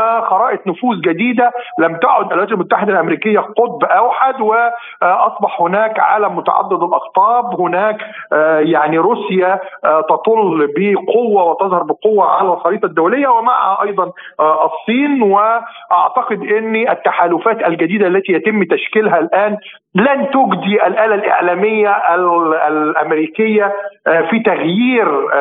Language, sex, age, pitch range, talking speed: Arabic, male, 50-69, 165-220 Hz, 100 wpm